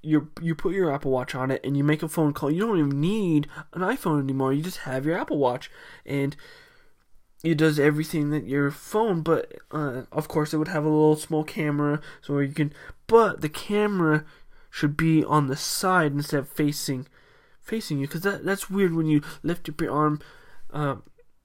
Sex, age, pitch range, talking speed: male, 20-39, 140-170 Hz, 200 wpm